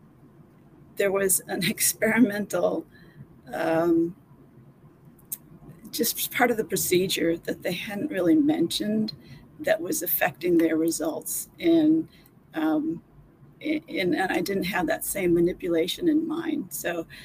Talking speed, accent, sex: 110 wpm, American, female